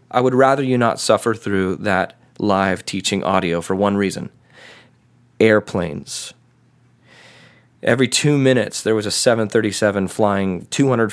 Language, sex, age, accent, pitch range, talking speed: English, male, 20-39, American, 105-130 Hz, 130 wpm